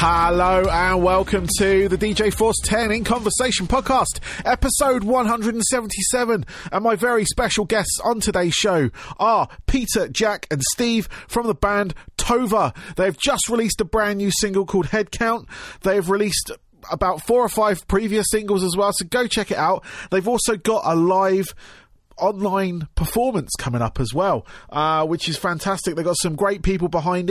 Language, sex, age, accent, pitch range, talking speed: English, male, 30-49, British, 170-215 Hz, 165 wpm